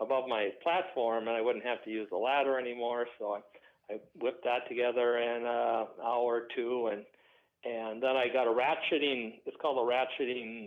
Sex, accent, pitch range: male, American, 115-135 Hz